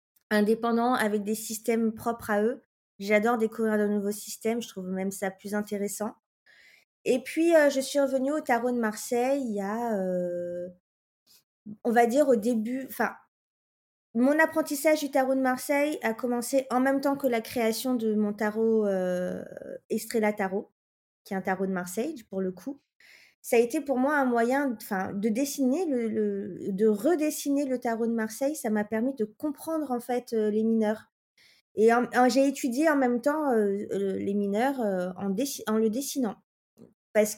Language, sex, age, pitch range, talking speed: French, female, 20-39, 210-265 Hz, 180 wpm